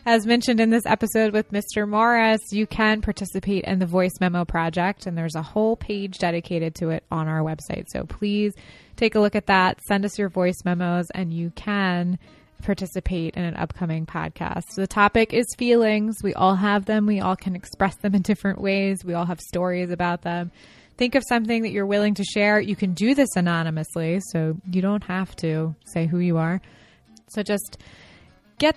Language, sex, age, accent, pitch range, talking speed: English, female, 20-39, American, 175-215 Hz, 195 wpm